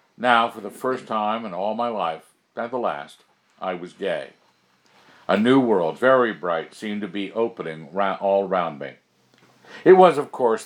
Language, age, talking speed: English, 60-79, 175 wpm